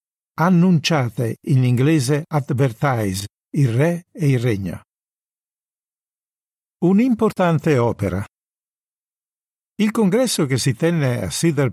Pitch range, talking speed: 125-165 Hz, 90 wpm